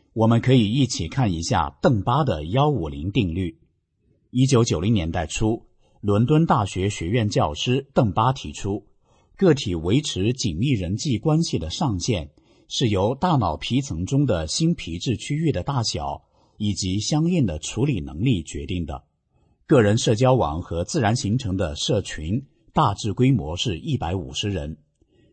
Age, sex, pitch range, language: 50-69, male, 90-130 Hz, English